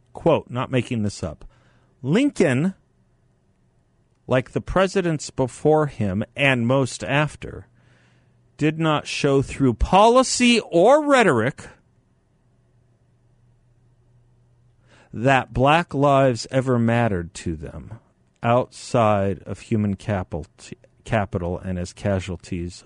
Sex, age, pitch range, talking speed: male, 50-69, 105-135 Hz, 95 wpm